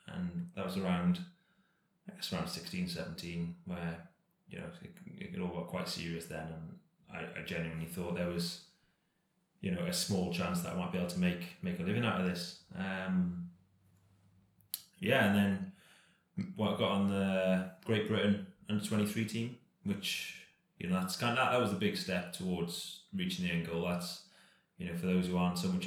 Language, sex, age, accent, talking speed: English, male, 20-39, British, 190 wpm